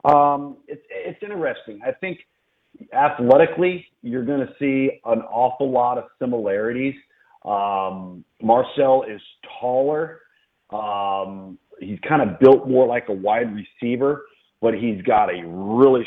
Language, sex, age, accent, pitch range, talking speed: English, male, 40-59, American, 105-135 Hz, 130 wpm